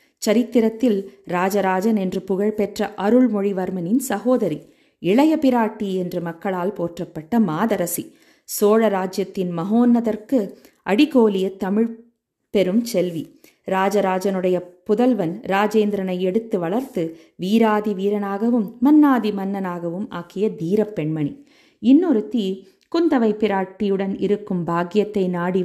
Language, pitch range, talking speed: Tamil, 185-235 Hz, 90 wpm